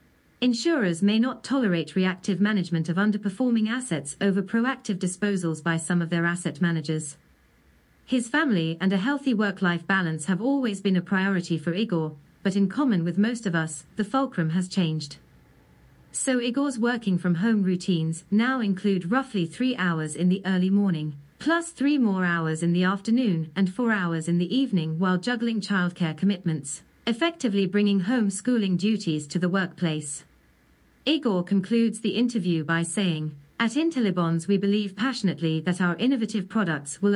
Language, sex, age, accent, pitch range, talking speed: English, female, 40-59, British, 170-225 Hz, 160 wpm